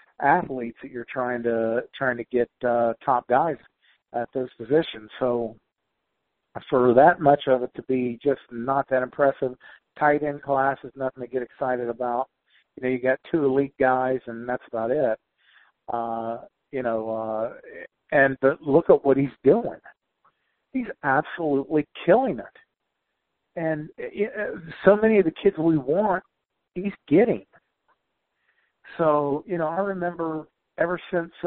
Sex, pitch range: male, 125-155 Hz